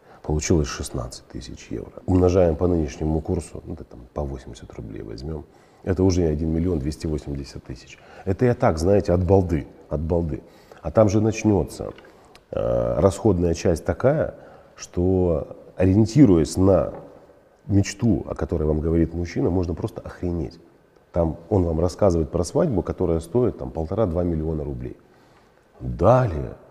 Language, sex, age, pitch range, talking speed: Russian, male, 40-59, 75-95 Hz, 140 wpm